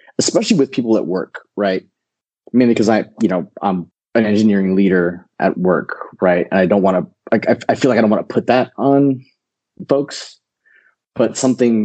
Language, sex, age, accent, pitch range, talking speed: English, male, 30-49, American, 90-115 Hz, 190 wpm